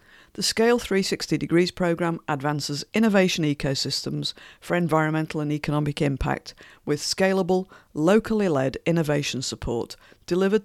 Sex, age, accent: female, 50-69, British